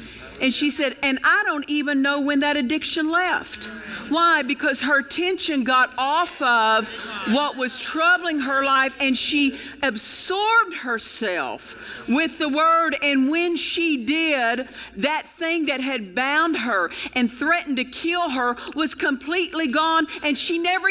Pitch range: 260-320 Hz